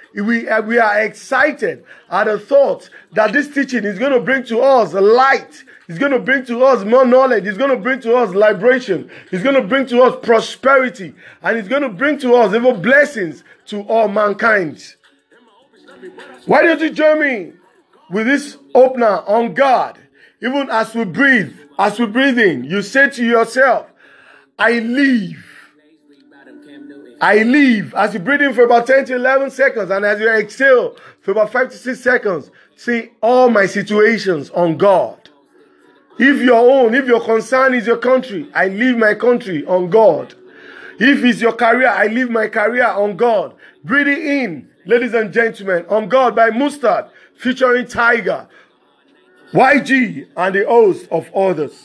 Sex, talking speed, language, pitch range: male, 165 wpm, English, 215-270 Hz